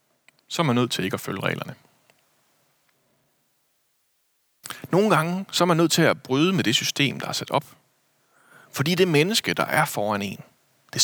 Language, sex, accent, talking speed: Danish, male, native, 180 wpm